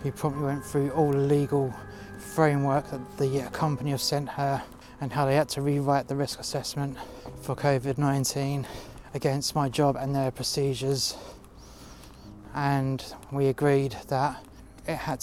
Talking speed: 145 wpm